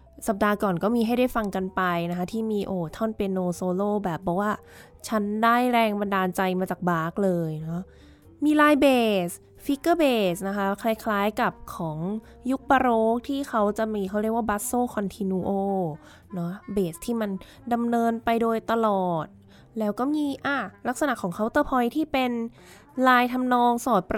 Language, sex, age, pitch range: Thai, female, 20-39, 190-245 Hz